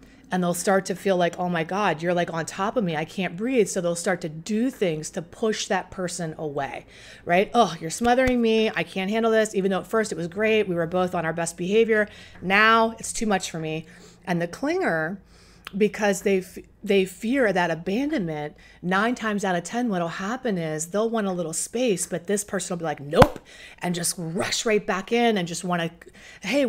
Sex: female